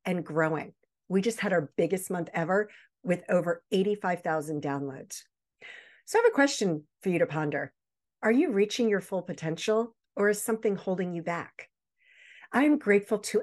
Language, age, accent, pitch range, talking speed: English, 50-69, American, 165-225 Hz, 170 wpm